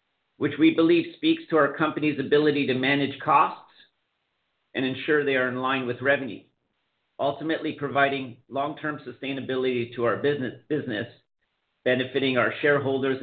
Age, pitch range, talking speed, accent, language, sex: 50-69, 125-150 Hz, 135 wpm, American, English, male